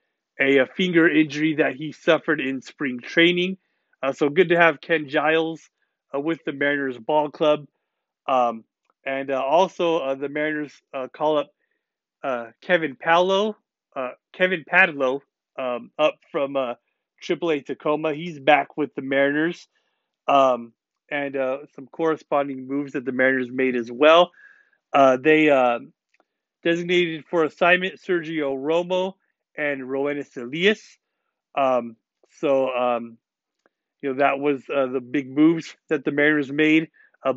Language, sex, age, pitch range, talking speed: English, male, 30-49, 135-165 Hz, 145 wpm